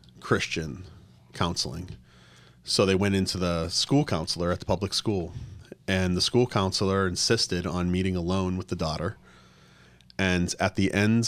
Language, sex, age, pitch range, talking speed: English, male, 30-49, 85-95 Hz, 150 wpm